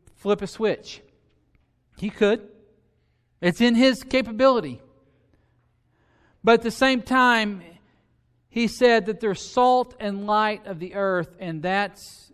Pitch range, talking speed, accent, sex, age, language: 180-235 Hz, 125 wpm, American, male, 40-59, English